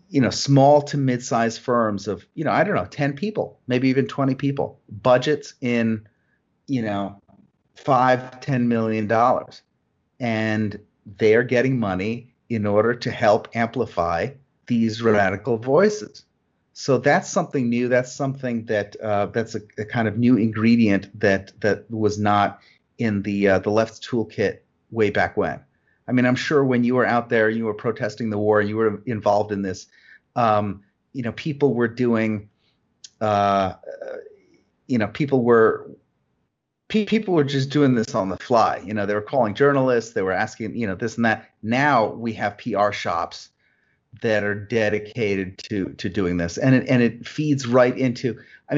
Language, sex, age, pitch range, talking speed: English, male, 40-59, 105-130 Hz, 170 wpm